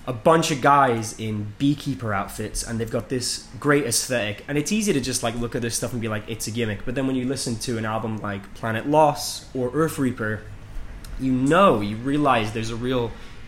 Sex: male